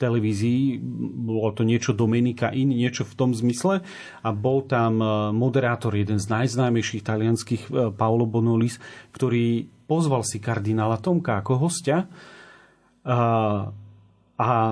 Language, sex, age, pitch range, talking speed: Slovak, male, 40-59, 115-140 Hz, 115 wpm